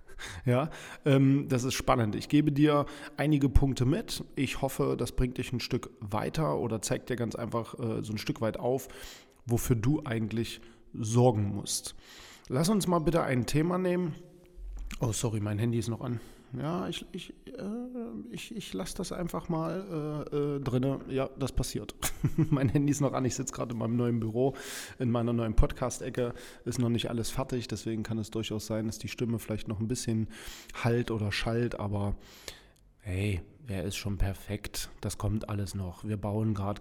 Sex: male